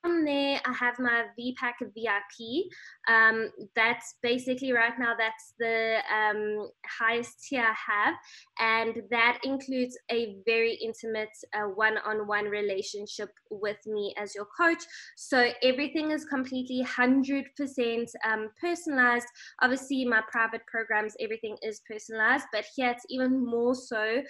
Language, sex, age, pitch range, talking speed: English, female, 20-39, 220-250 Hz, 135 wpm